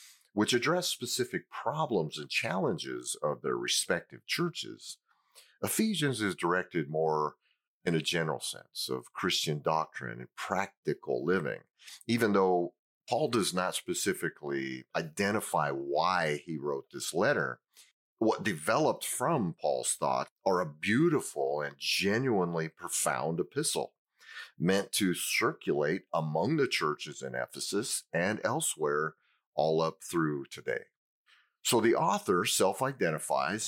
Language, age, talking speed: English, 40-59, 120 wpm